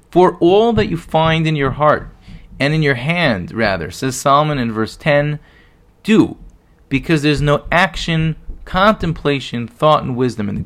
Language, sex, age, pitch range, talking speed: English, male, 30-49, 120-160 Hz, 170 wpm